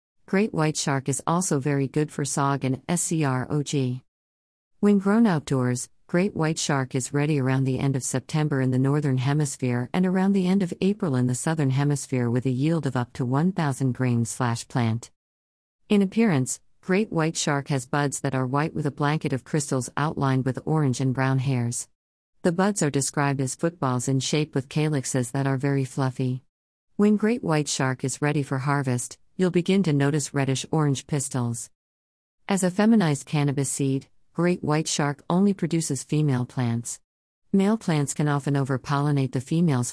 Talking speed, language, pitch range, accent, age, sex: 175 wpm, English, 130-155 Hz, American, 50-69, female